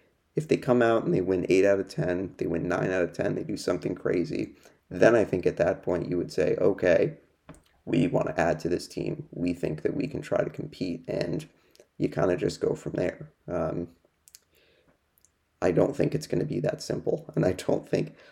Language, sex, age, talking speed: English, male, 30-49, 225 wpm